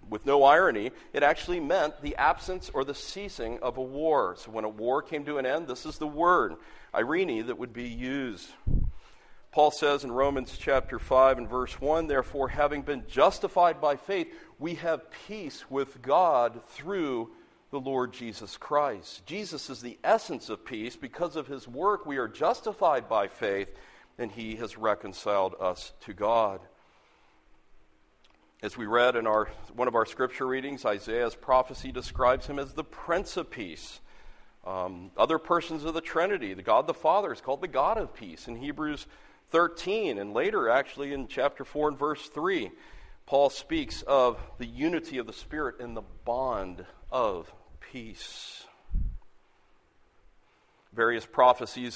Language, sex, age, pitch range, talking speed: English, male, 50-69, 120-155 Hz, 160 wpm